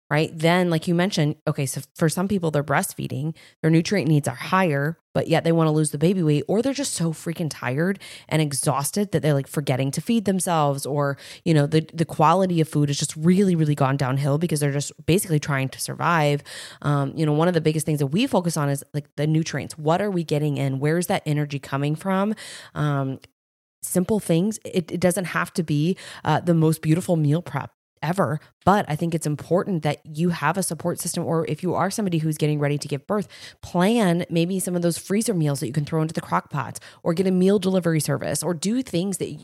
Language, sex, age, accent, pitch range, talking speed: English, female, 20-39, American, 145-175 Hz, 230 wpm